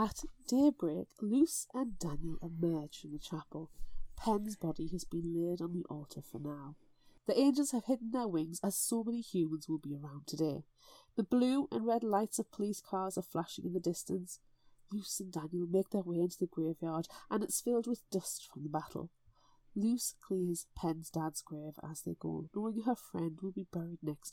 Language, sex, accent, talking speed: English, female, British, 190 wpm